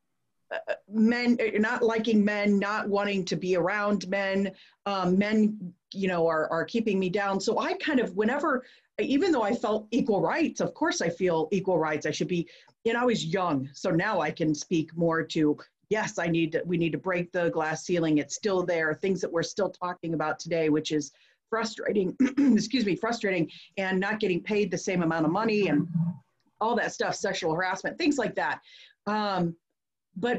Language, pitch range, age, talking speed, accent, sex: English, 170-210 Hz, 40-59, 195 wpm, American, female